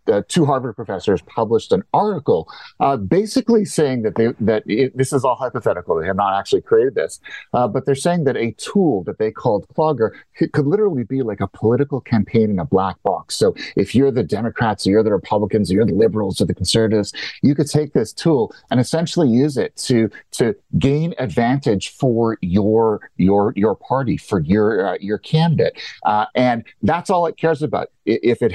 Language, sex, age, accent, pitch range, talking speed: English, male, 40-59, American, 105-135 Hz, 200 wpm